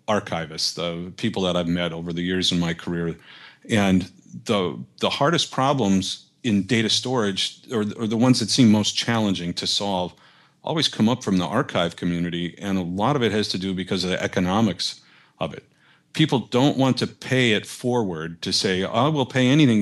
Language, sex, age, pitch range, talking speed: English, male, 40-59, 90-115 Hz, 195 wpm